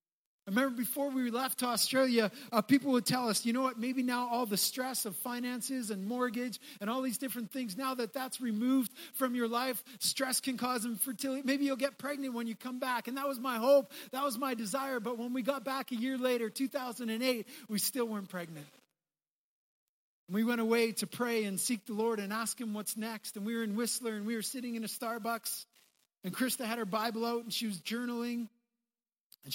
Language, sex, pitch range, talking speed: English, male, 190-245 Hz, 215 wpm